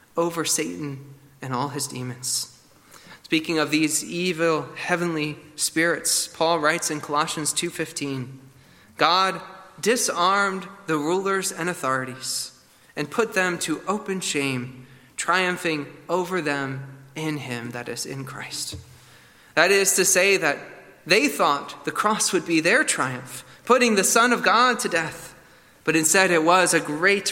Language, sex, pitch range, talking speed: English, male, 140-175 Hz, 140 wpm